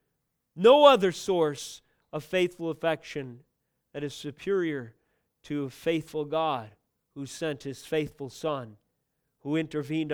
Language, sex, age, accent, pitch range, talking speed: English, male, 40-59, American, 145-170 Hz, 120 wpm